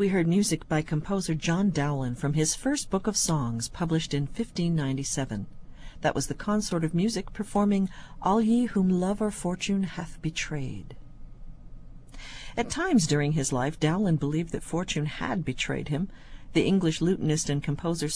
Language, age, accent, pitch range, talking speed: English, 50-69, American, 145-200 Hz, 160 wpm